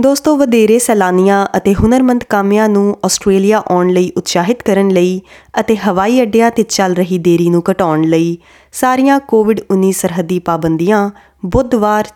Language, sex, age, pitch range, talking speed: Punjabi, female, 20-39, 180-230 Hz, 140 wpm